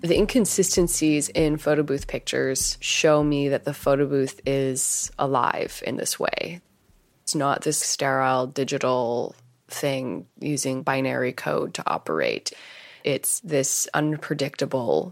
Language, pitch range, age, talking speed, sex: English, 130-150 Hz, 20-39, 125 wpm, female